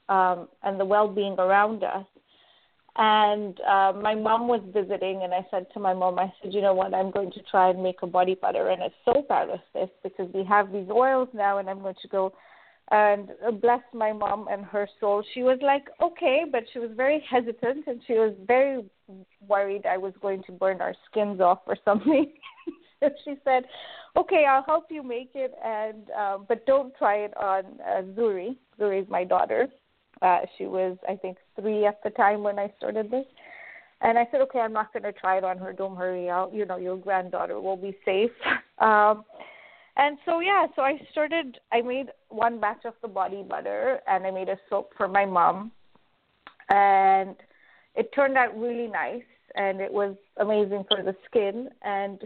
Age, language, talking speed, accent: 30-49, English, 200 wpm, Indian